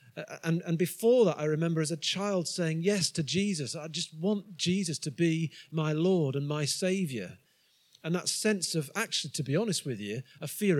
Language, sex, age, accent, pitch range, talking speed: English, male, 40-59, British, 140-180 Hz, 200 wpm